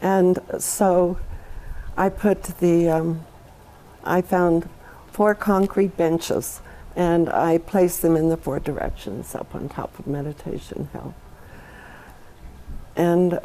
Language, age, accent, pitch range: English, 60-79, American, 150-180 Hz